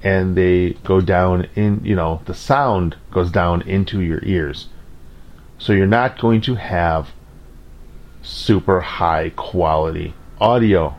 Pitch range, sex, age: 80-100 Hz, male, 40-59